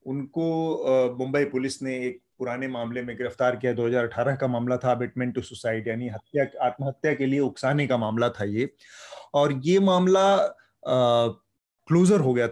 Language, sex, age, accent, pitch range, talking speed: Hindi, male, 30-49, native, 125-150 Hz, 150 wpm